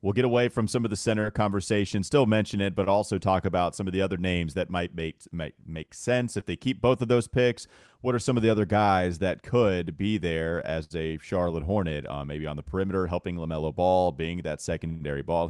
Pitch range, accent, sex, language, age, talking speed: 85-115 Hz, American, male, English, 30-49, 230 wpm